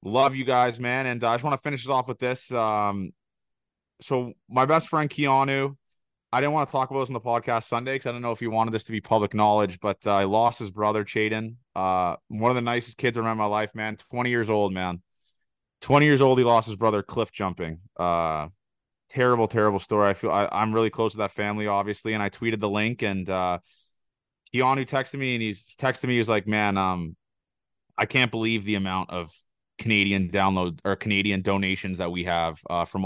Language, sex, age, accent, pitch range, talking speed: English, male, 20-39, American, 100-125 Hz, 225 wpm